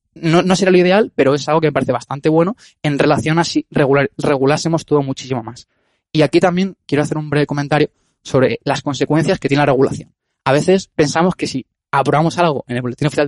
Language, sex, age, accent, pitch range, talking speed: Spanish, male, 20-39, Spanish, 135-170 Hz, 215 wpm